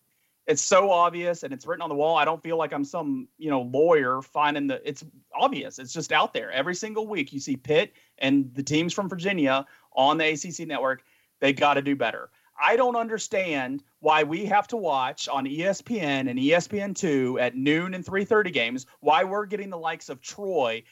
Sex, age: male, 40-59